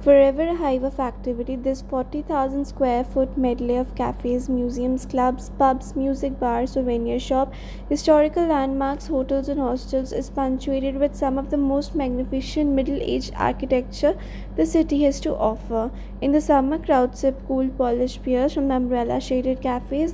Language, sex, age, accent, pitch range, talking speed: English, female, 20-39, Indian, 255-285 Hz, 145 wpm